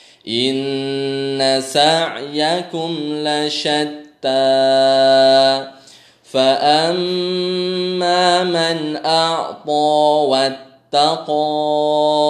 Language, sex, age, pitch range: Indonesian, male, 20-39, 135-165 Hz